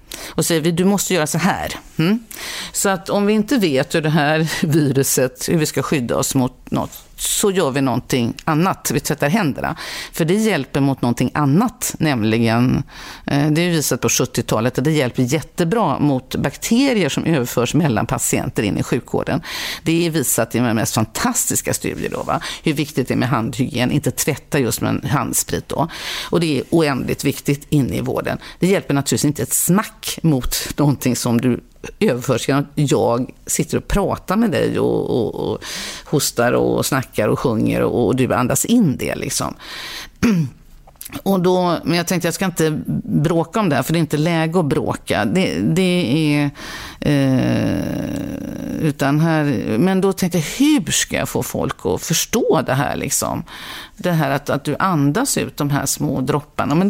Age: 50-69